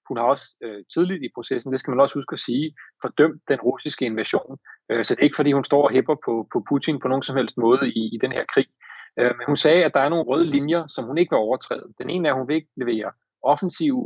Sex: male